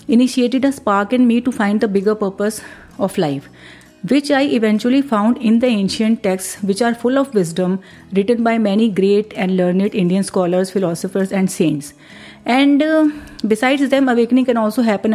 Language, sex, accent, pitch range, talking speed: Hindi, female, native, 190-235 Hz, 175 wpm